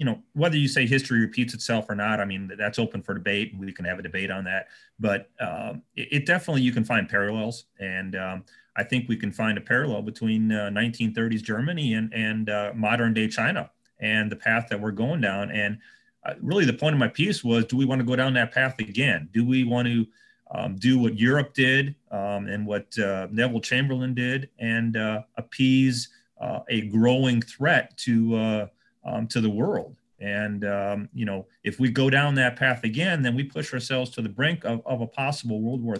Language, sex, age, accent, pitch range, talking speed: English, male, 30-49, American, 105-130 Hz, 215 wpm